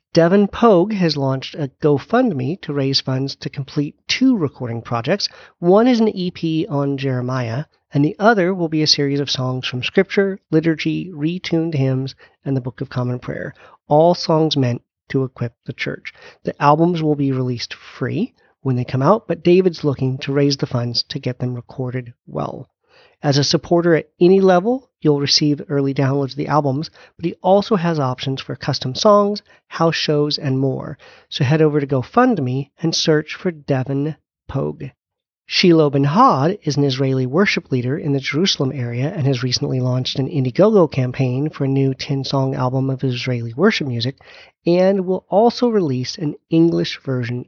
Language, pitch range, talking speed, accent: English, 130-170 Hz, 175 wpm, American